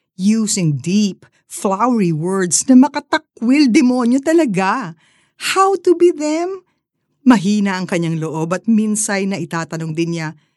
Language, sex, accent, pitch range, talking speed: Filipino, female, native, 155-240 Hz, 125 wpm